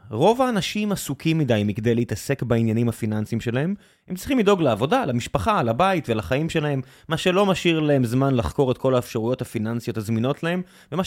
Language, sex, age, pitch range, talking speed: Hebrew, male, 20-39, 125-170 Hz, 165 wpm